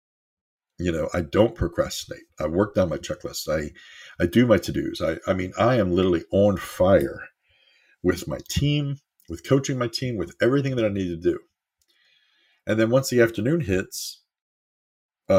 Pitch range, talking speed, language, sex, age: 85-115 Hz, 180 wpm, English, male, 50-69